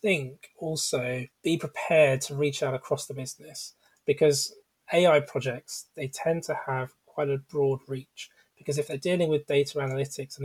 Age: 20-39